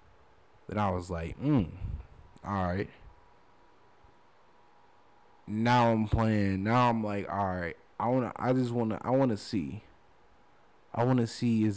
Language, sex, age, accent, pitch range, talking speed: English, male, 20-39, American, 95-115 Hz, 140 wpm